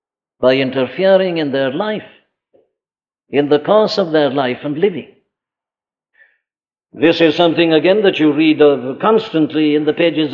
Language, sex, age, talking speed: English, male, 60-79, 140 wpm